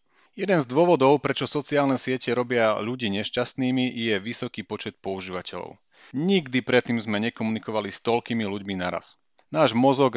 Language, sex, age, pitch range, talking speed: Slovak, male, 40-59, 105-135 Hz, 135 wpm